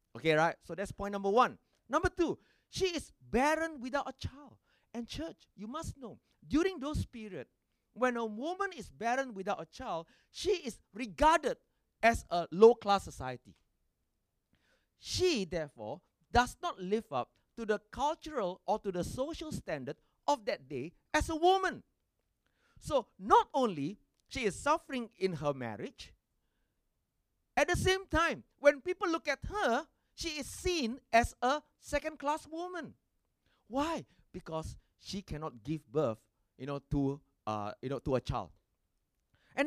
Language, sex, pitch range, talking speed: English, male, 195-300 Hz, 150 wpm